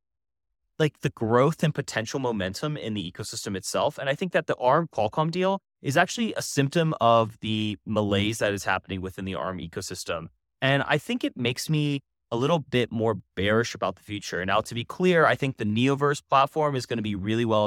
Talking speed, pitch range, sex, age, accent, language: 205 wpm, 105-150 Hz, male, 20-39, American, English